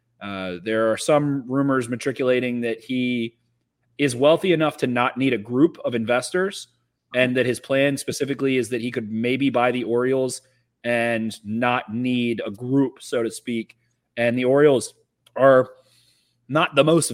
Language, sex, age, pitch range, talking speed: English, male, 30-49, 115-135 Hz, 160 wpm